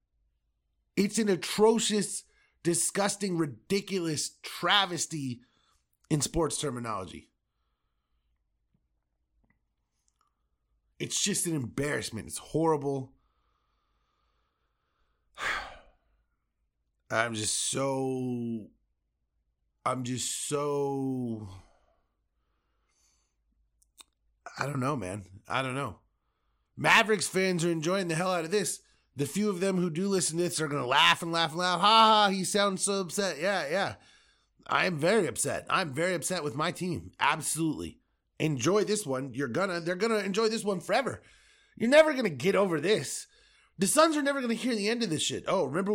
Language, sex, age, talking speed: English, male, 30-49, 140 wpm